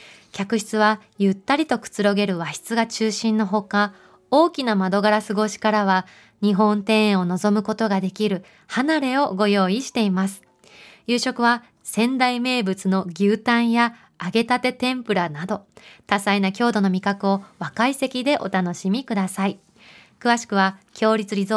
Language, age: Japanese, 20-39